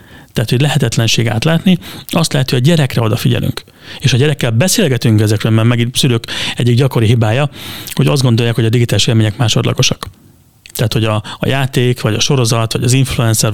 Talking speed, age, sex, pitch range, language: 175 wpm, 30-49, male, 115-135 Hz, Hungarian